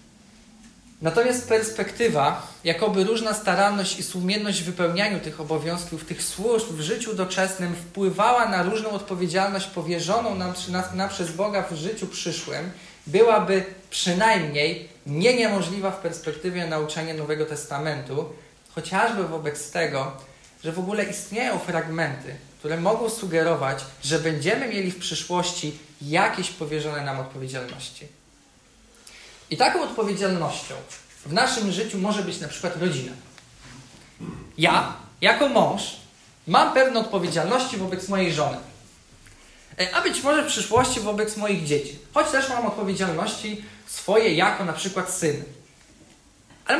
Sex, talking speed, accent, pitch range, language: male, 125 wpm, native, 155-215 Hz, Polish